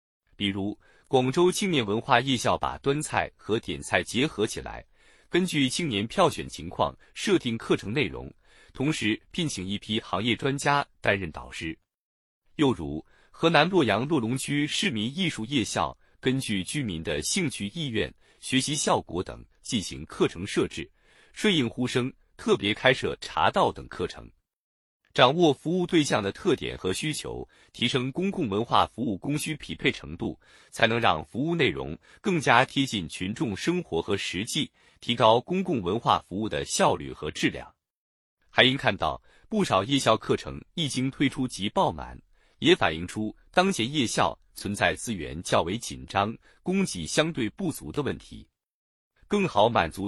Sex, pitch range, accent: male, 105-150 Hz, native